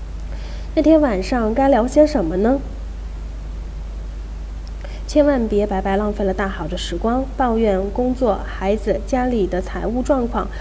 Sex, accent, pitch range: female, native, 185-260 Hz